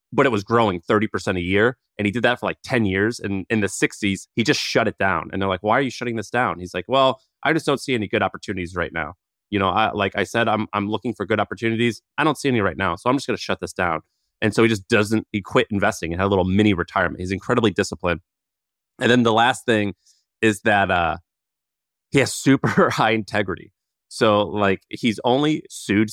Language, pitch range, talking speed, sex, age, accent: English, 95-115 Hz, 245 wpm, male, 30-49, American